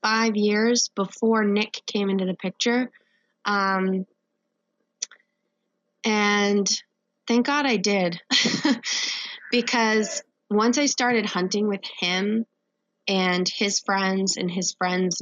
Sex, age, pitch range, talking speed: female, 20-39, 185-220 Hz, 105 wpm